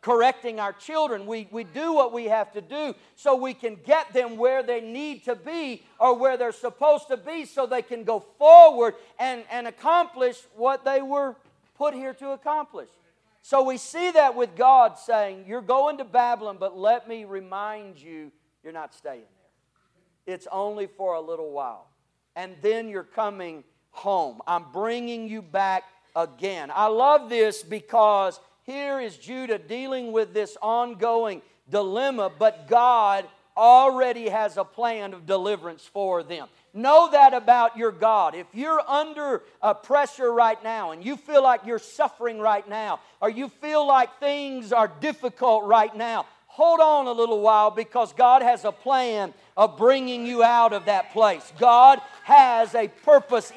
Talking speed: 170 wpm